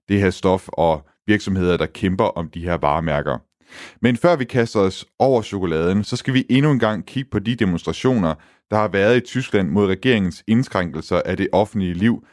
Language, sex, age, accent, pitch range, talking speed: Danish, male, 30-49, native, 90-115 Hz, 195 wpm